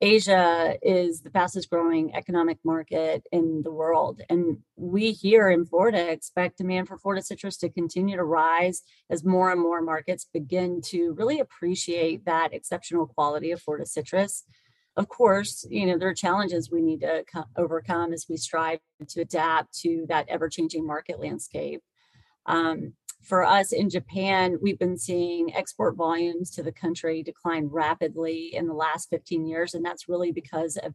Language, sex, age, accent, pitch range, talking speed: English, female, 30-49, American, 165-180 Hz, 165 wpm